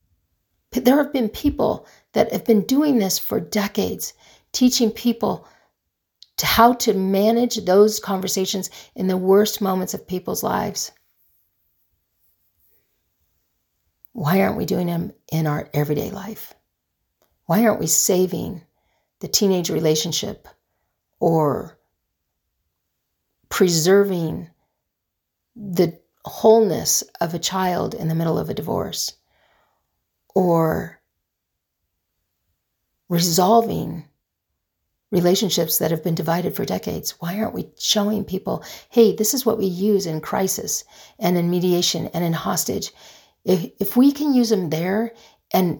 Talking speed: 120 wpm